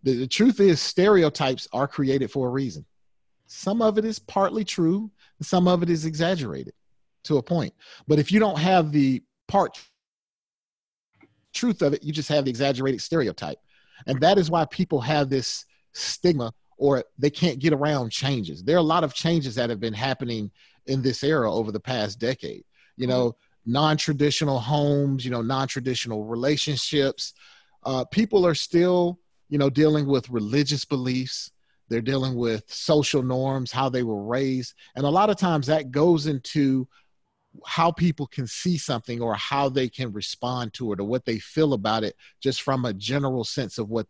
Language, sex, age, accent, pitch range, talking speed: English, male, 30-49, American, 125-155 Hz, 175 wpm